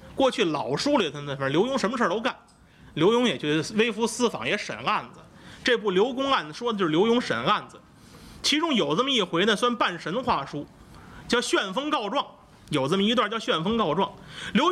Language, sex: Chinese, male